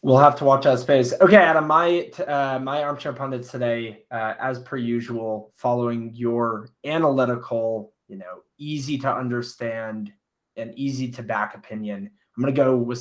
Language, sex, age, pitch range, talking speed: English, male, 20-39, 110-130 Hz, 165 wpm